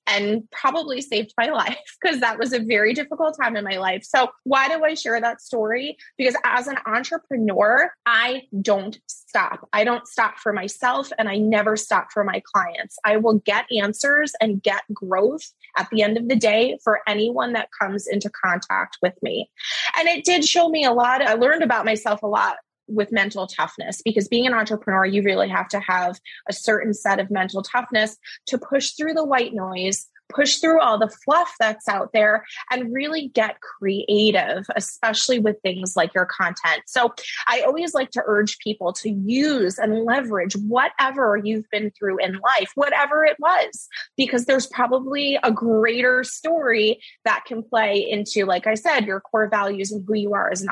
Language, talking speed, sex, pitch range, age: English, 190 wpm, female, 205-260 Hz, 20-39